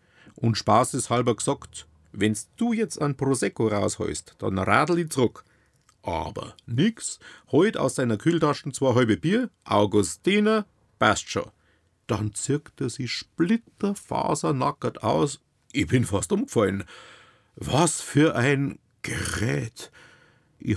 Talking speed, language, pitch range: 115 wpm, German, 105-145 Hz